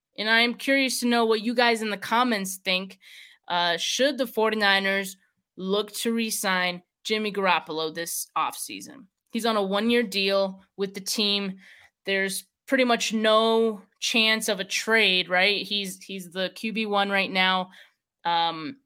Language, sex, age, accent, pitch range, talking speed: English, female, 20-39, American, 190-235 Hz, 155 wpm